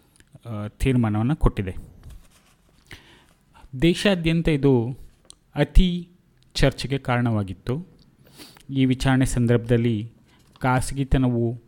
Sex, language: male, Kannada